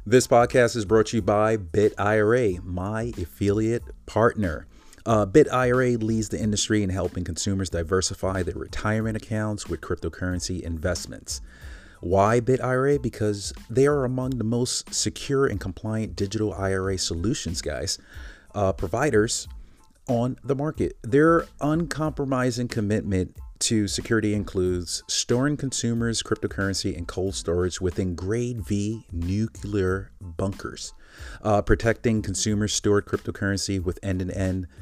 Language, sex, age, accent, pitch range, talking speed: English, male, 30-49, American, 90-115 Hz, 125 wpm